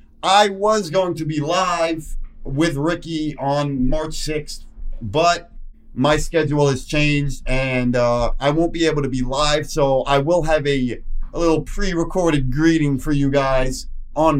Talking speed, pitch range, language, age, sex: 160 wpm, 115-155 Hz, English, 30-49, male